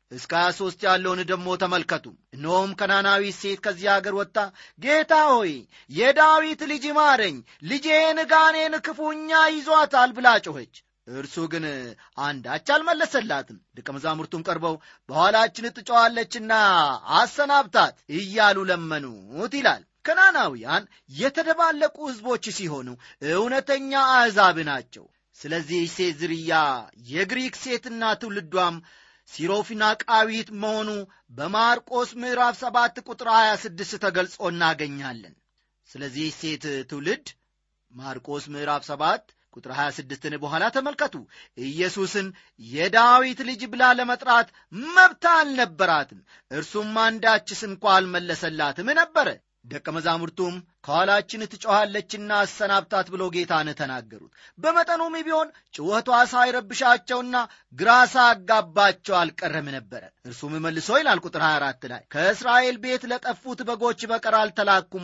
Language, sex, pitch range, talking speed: Amharic, male, 165-250 Hz, 100 wpm